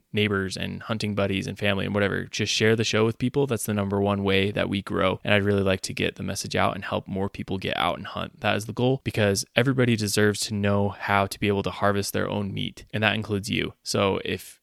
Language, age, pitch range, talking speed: English, 20-39, 100-110 Hz, 260 wpm